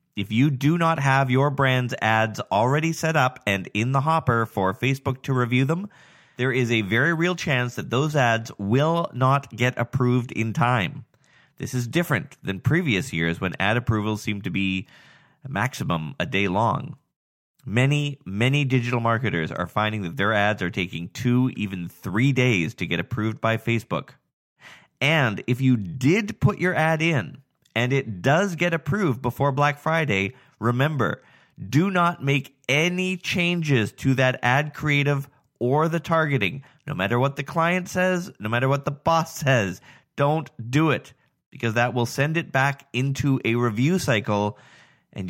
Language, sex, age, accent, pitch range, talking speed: English, male, 30-49, American, 115-145 Hz, 165 wpm